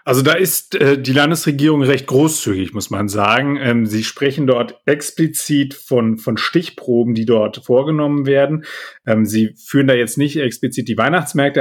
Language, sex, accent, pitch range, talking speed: German, male, German, 115-140 Hz, 165 wpm